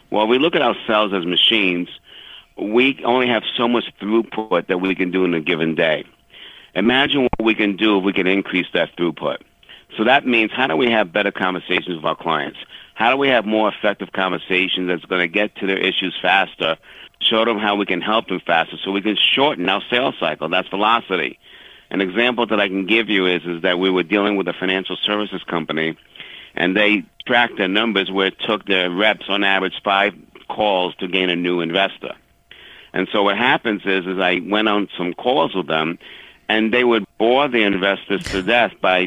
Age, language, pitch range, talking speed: 50-69, English, 90-110 Hz, 210 wpm